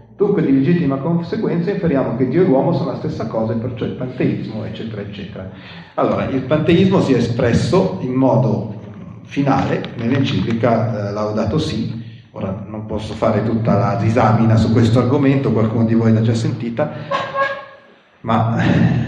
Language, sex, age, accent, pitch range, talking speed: Italian, male, 40-59, native, 110-140 Hz, 155 wpm